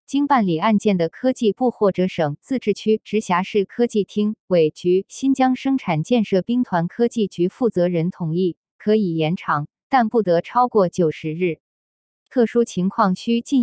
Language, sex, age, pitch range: Chinese, female, 20-39, 175-230 Hz